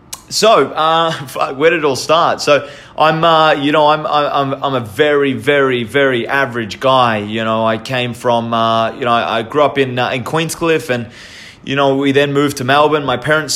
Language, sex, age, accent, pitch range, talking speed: English, male, 30-49, Australian, 125-150 Hz, 205 wpm